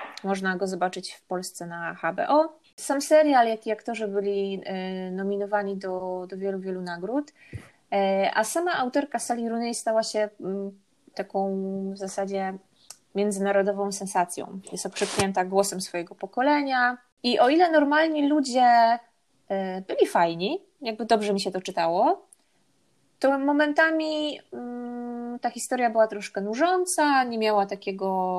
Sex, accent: female, native